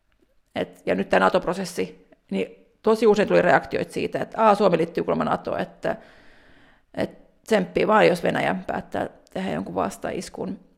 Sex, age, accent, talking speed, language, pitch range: female, 40-59, native, 150 wpm, Finnish, 195-230 Hz